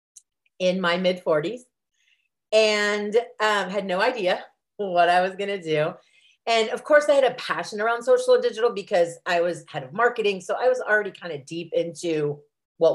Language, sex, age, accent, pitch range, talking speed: English, female, 30-49, American, 155-220 Hz, 190 wpm